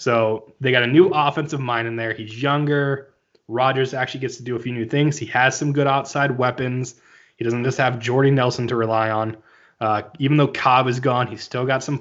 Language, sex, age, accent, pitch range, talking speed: English, male, 20-39, American, 120-140 Hz, 225 wpm